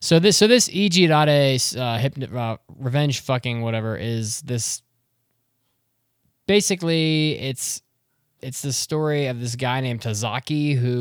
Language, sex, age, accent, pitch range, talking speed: English, male, 20-39, American, 110-130 Hz, 130 wpm